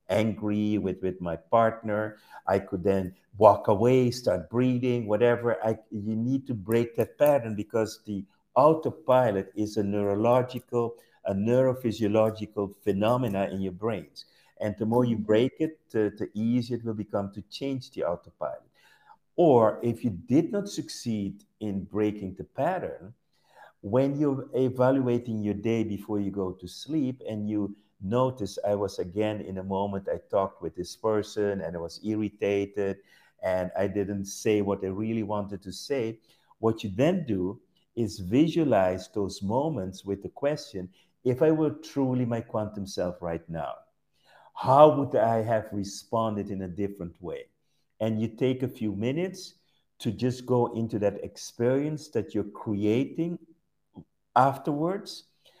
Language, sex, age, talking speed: English, male, 50-69, 150 wpm